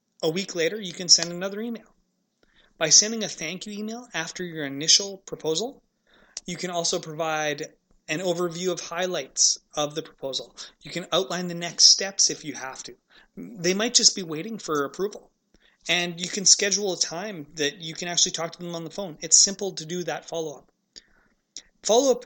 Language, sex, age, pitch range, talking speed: English, male, 30-49, 155-200 Hz, 185 wpm